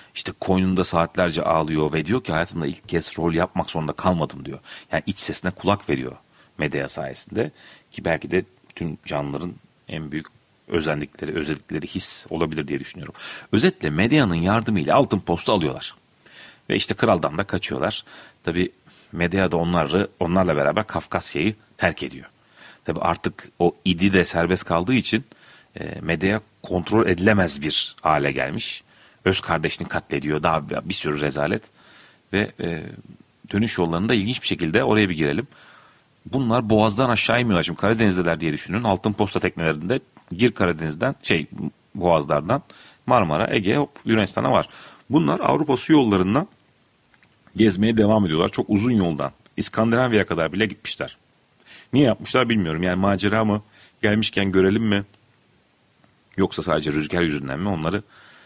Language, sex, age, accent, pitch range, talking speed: Turkish, male, 40-59, native, 85-110 Hz, 140 wpm